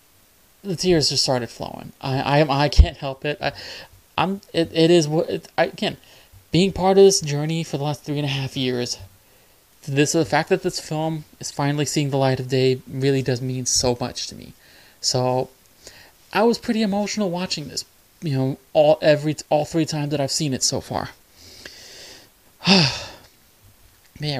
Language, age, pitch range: English, 20-39, 130-165 Hz